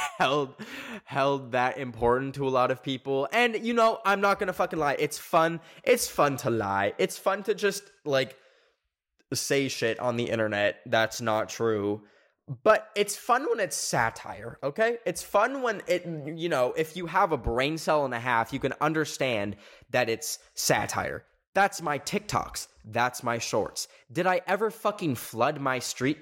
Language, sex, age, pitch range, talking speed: English, male, 10-29, 125-200 Hz, 175 wpm